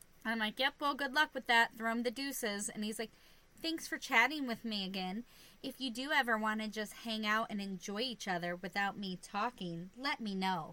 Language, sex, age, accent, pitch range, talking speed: English, female, 20-39, American, 190-255 Hz, 225 wpm